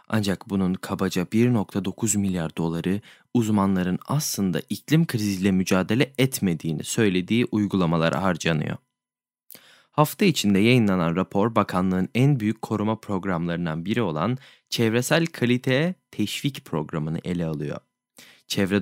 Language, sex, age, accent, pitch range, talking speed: Turkish, male, 20-39, native, 90-120 Hz, 105 wpm